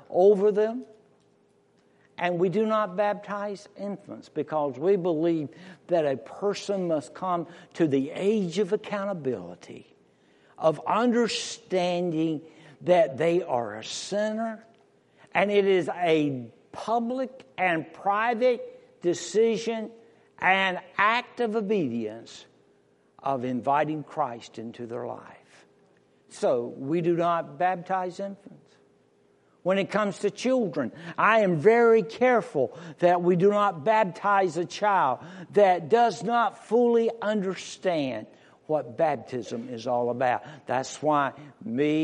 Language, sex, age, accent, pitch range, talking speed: English, male, 60-79, American, 145-210 Hz, 115 wpm